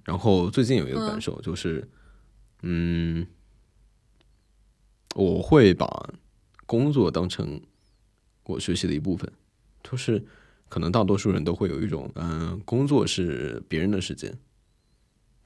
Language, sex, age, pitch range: Chinese, male, 20-39, 85-110 Hz